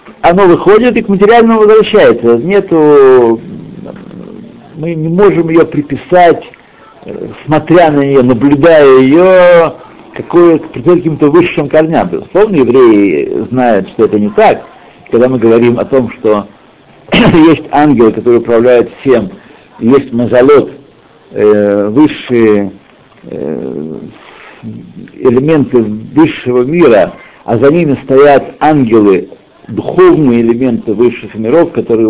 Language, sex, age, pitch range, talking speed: Russian, male, 60-79, 120-175 Hz, 105 wpm